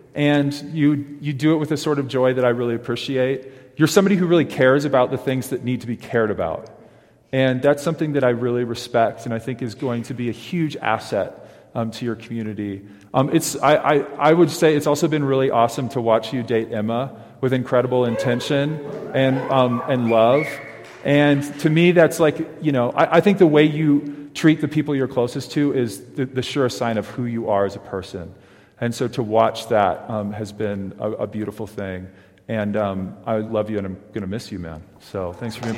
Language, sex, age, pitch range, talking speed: English, male, 40-59, 115-150 Hz, 220 wpm